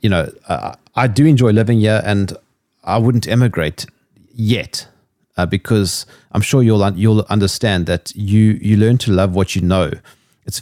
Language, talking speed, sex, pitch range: English, 175 wpm, male, 95-120 Hz